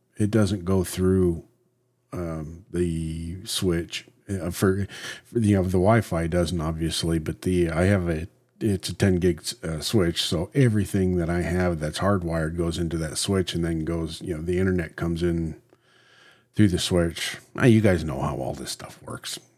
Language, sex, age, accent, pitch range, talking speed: English, male, 50-69, American, 85-110 Hz, 180 wpm